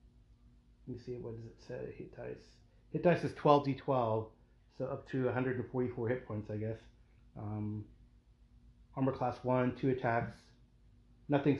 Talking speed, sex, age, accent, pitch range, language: 145 wpm, male, 30-49, American, 115-130 Hz, English